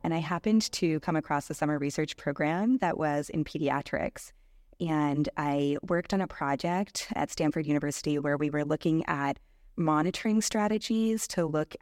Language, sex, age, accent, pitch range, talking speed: English, female, 20-39, American, 150-180 Hz, 165 wpm